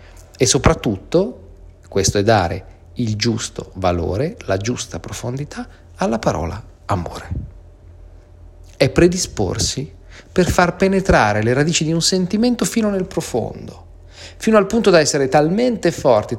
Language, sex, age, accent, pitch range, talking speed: Italian, male, 40-59, native, 85-140 Hz, 125 wpm